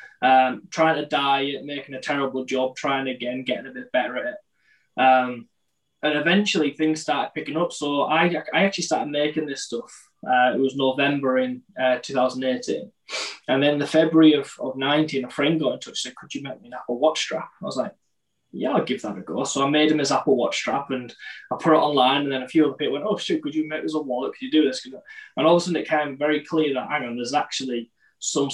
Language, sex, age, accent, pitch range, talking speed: English, male, 10-29, British, 130-155 Hz, 240 wpm